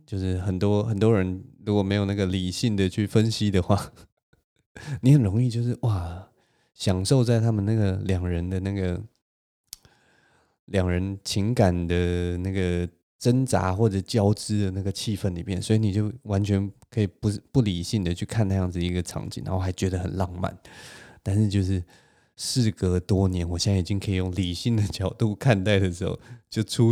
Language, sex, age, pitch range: Chinese, male, 20-39, 95-110 Hz